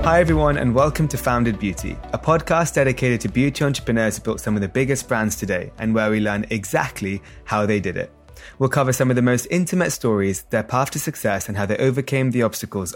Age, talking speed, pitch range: 20-39, 220 wpm, 105-145 Hz